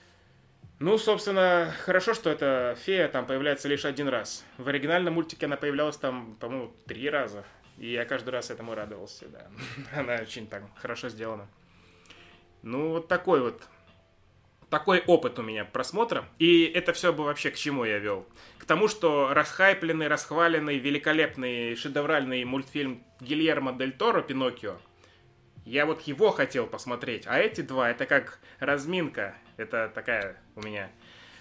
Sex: male